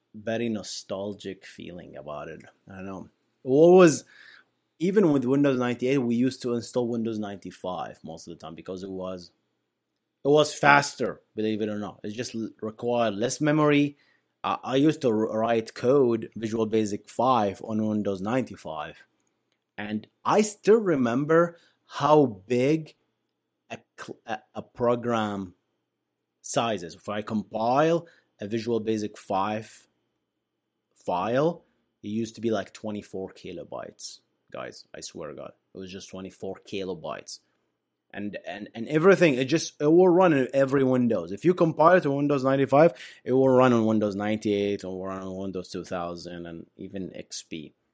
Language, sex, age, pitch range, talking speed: English, male, 30-49, 105-140 Hz, 150 wpm